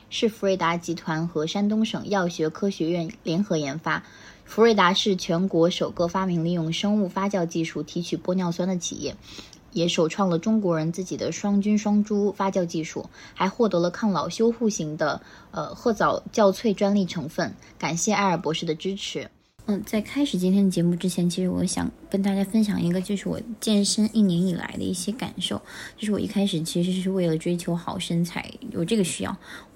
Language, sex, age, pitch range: Chinese, female, 20-39, 170-205 Hz